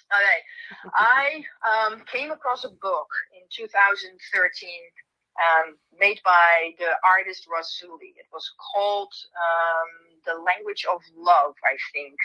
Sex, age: female, 40-59